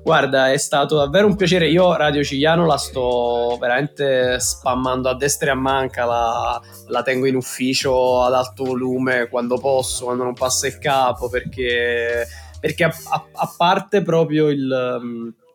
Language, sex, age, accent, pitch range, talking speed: Italian, male, 20-39, native, 120-145 Hz, 160 wpm